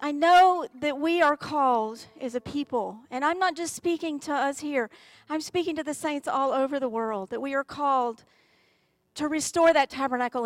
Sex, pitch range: female, 250-335 Hz